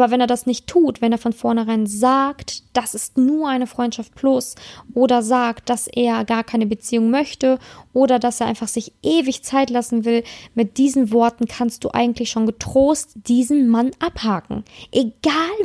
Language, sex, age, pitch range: German, female, 20-39, 235-280 Hz